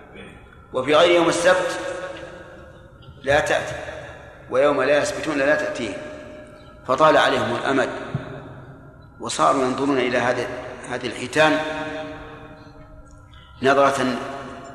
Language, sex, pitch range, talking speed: Arabic, male, 125-155 Hz, 85 wpm